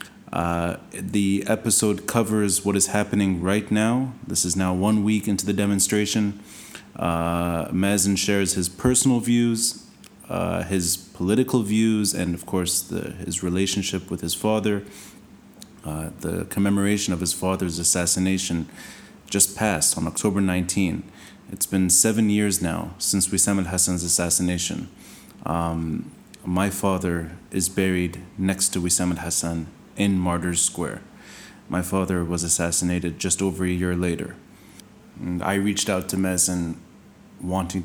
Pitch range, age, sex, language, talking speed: 90-100 Hz, 30-49, male, English, 135 wpm